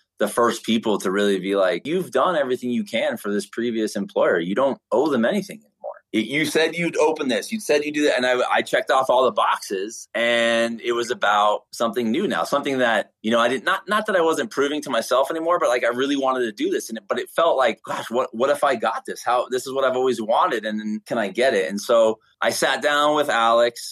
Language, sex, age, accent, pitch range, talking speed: English, male, 20-39, American, 100-130 Hz, 250 wpm